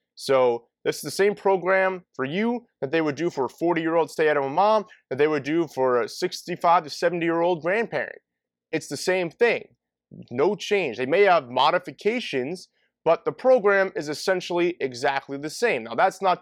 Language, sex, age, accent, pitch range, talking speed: English, male, 30-49, American, 150-200 Hz, 180 wpm